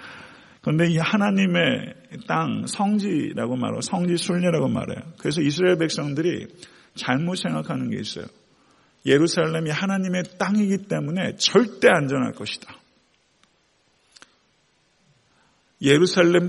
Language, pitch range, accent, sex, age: Korean, 140-185 Hz, native, male, 40-59